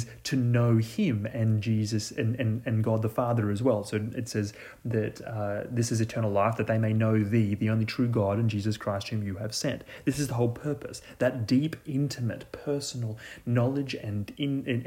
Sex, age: male, 30-49